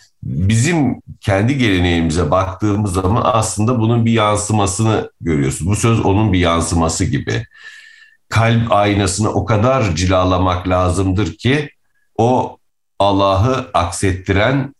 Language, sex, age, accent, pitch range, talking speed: Turkish, male, 60-79, native, 95-120 Hz, 105 wpm